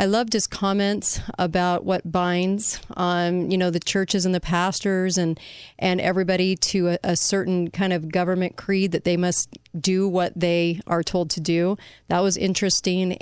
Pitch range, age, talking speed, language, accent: 175-195 Hz, 30-49, 175 wpm, English, American